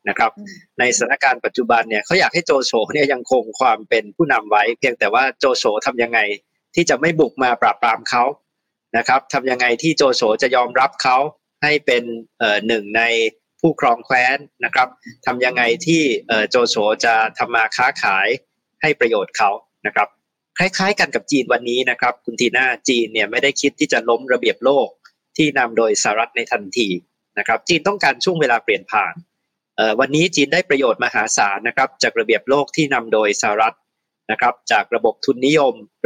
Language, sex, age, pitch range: Thai, male, 20-39, 120-195 Hz